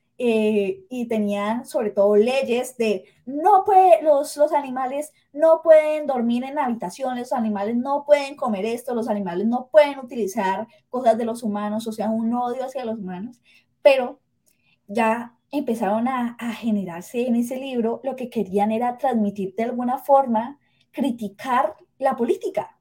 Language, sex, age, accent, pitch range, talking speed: Spanish, female, 20-39, Colombian, 220-285 Hz, 155 wpm